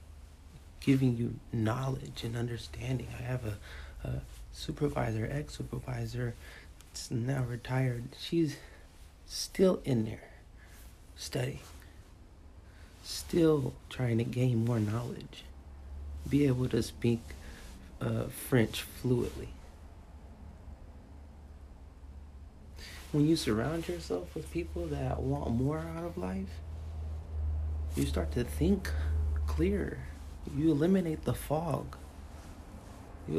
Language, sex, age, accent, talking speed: English, male, 30-49, American, 95 wpm